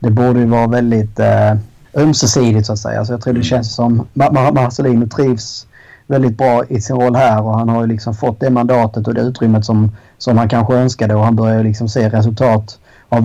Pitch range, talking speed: 110-125 Hz, 220 wpm